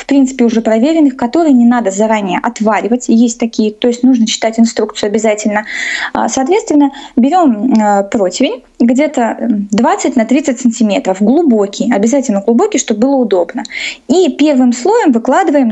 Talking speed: 135 wpm